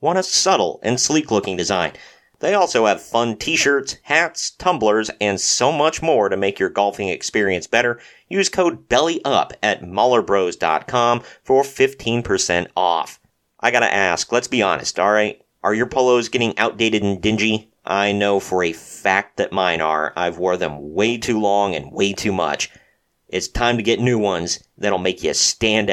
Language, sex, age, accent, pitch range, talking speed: English, male, 40-59, American, 95-125 Hz, 170 wpm